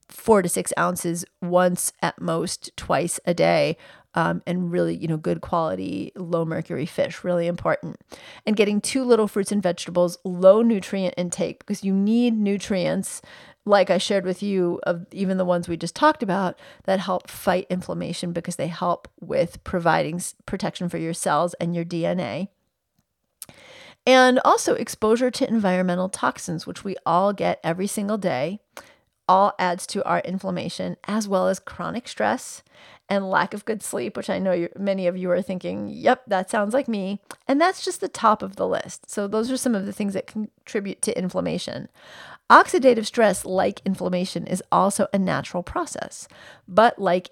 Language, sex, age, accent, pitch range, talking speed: English, female, 40-59, American, 175-210 Hz, 170 wpm